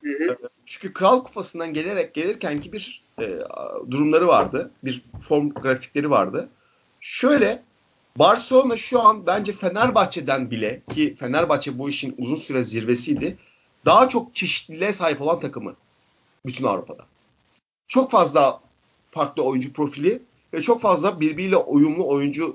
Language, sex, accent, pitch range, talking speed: Turkish, male, native, 145-195 Hz, 120 wpm